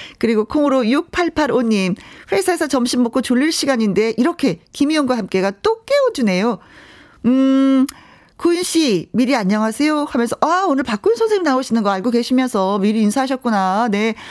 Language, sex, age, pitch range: Korean, female, 40-59, 195-275 Hz